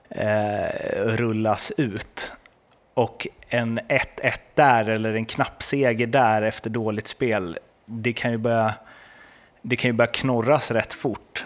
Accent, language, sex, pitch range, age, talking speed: native, Swedish, male, 100-120 Hz, 30-49, 110 wpm